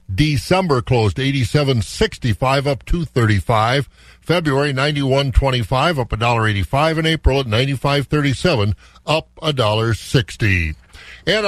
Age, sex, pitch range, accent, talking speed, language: 50-69, male, 125-165 Hz, American, 155 wpm, English